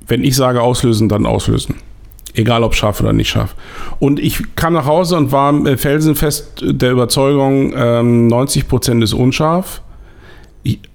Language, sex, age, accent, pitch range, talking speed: German, male, 50-69, German, 100-135 Hz, 150 wpm